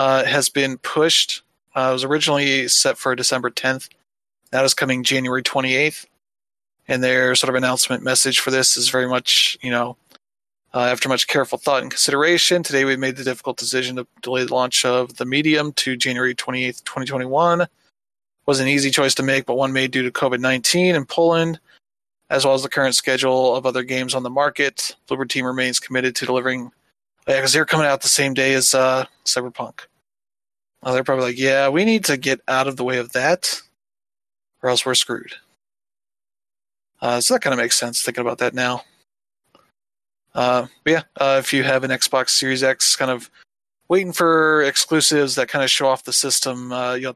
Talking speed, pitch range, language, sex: 195 wpm, 125-135 Hz, English, male